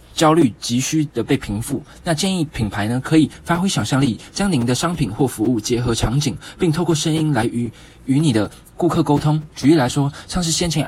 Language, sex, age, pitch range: Chinese, male, 20-39, 115-155 Hz